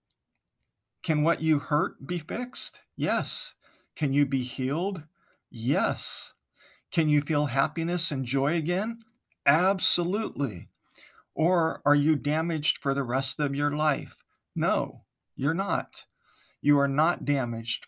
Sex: male